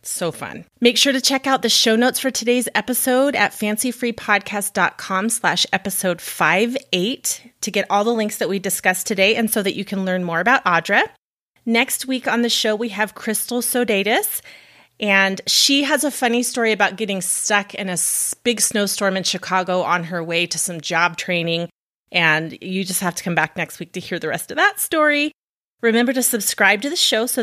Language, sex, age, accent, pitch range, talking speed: English, female, 30-49, American, 185-240 Hz, 195 wpm